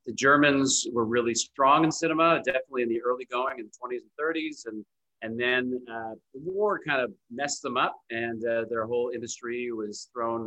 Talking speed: 200 wpm